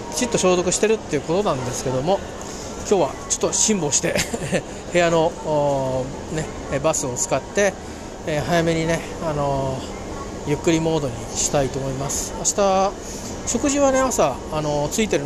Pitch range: 140-185 Hz